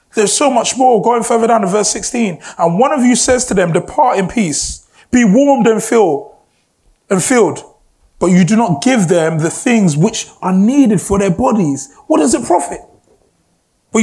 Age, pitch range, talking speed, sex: 20-39, 160-235 Hz, 185 wpm, male